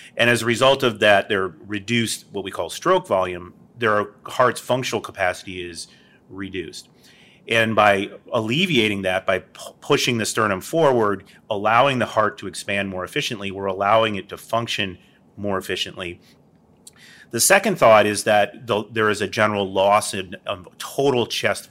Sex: male